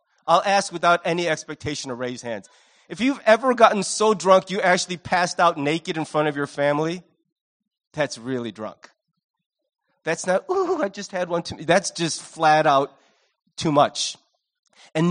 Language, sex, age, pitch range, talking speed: English, male, 30-49, 160-230 Hz, 165 wpm